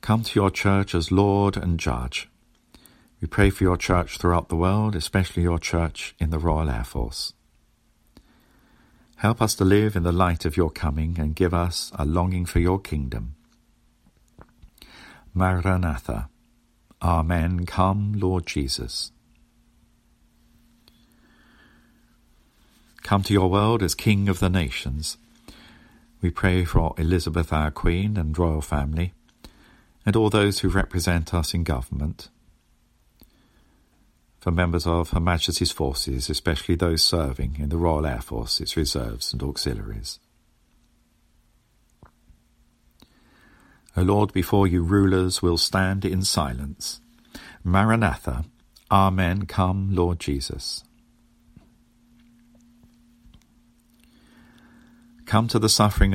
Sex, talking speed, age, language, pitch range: male, 115 wpm, 50-69, English, 80-100 Hz